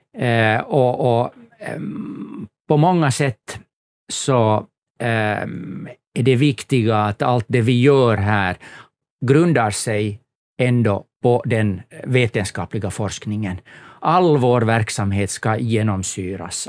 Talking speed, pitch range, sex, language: 95 wpm, 110-135 Hz, male, Swedish